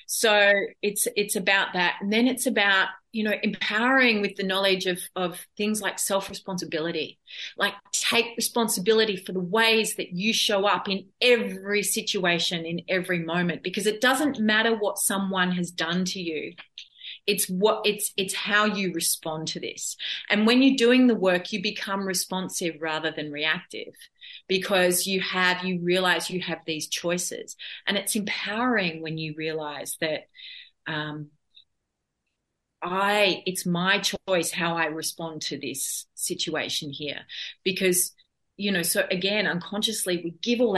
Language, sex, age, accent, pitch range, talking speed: English, female, 30-49, Australian, 175-225 Hz, 155 wpm